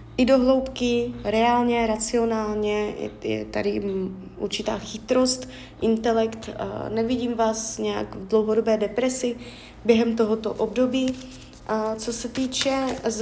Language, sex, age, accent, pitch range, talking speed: Czech, female, 20-39, native, 205-240 Hz, 105 wpm